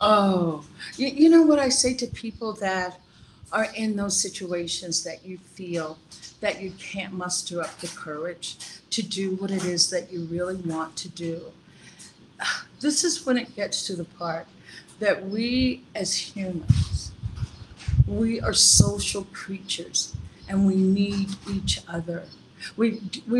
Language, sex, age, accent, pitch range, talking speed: English, female, 50-69, American, 175-220 Hz, 145 wpm